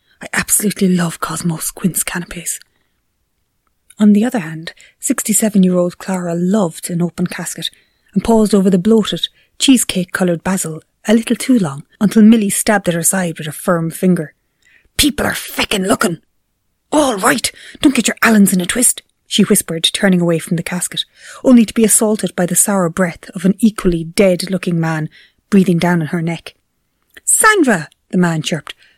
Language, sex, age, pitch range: English, female, 30-49, 175-215 Hz